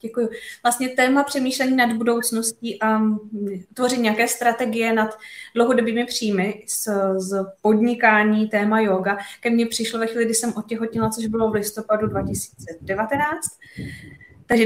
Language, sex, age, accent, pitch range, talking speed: Czech, female, 20-39, native, 205-230 Hz, 125 wpm